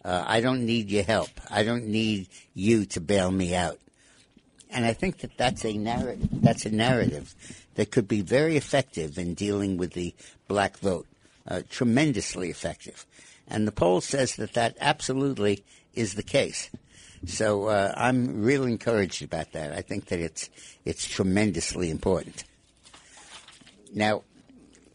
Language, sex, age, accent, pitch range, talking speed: English, male, 60-79, American, 100-125 Hz, 150 wpm